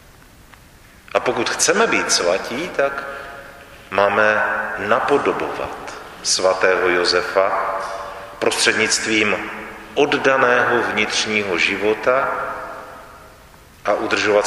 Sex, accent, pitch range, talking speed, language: male, native, 90-125 Hz, 65 wpm, Czech